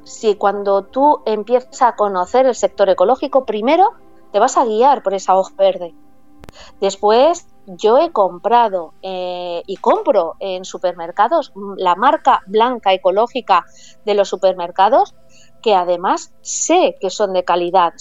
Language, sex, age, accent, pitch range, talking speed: Spanish, female, 20-39, Spanish, 190-260 Hz, 135 wpm